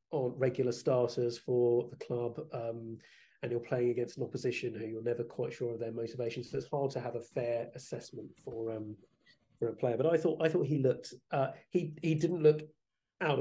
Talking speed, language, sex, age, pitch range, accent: 210 wpm, English, male, 30-49, 120-135 Hz, British